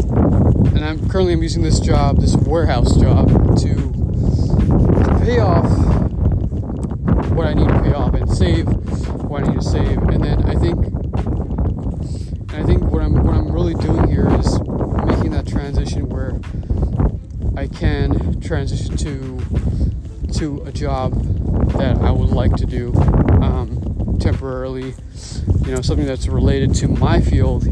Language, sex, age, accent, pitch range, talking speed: English, male, 30-49, American, 85-110 Hz, 145 wpm